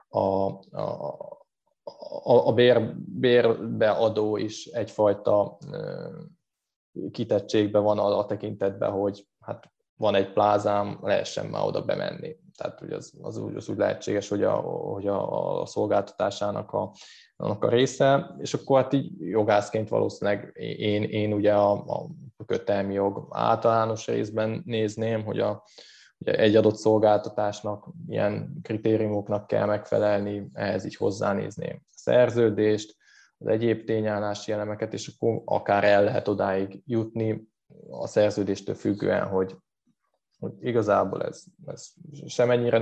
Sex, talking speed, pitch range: male, 130 wpm, 100-115 Hz